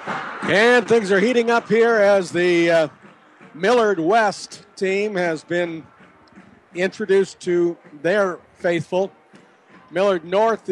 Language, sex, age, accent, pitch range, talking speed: English, male, 50-69, American, 155-195 Hz, 110 wpm